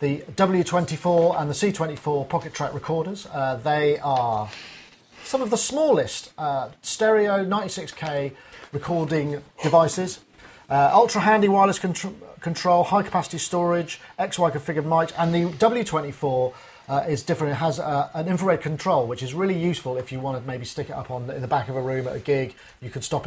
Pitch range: 140-180 Hz